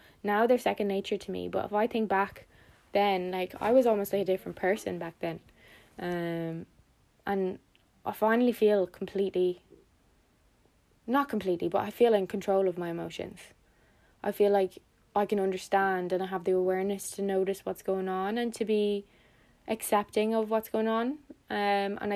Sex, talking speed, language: female, 175 wpm, English